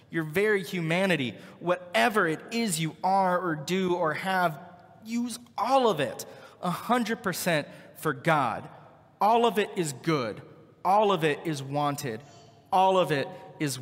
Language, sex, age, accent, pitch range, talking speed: English, male, 30-49, American, 145-180 Hz, 145 wpm